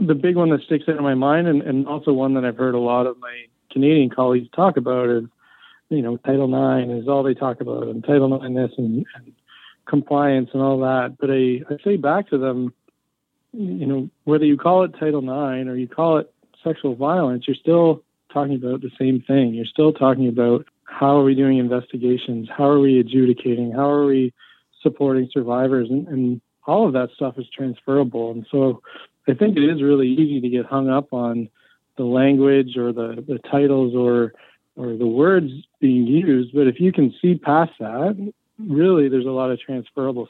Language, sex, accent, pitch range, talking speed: English, male, American, 125-145 Hz, 200 wpm